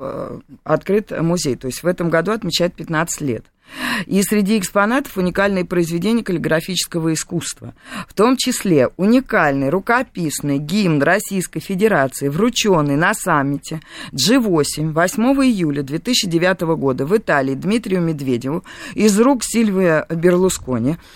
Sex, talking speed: female, 115 wpm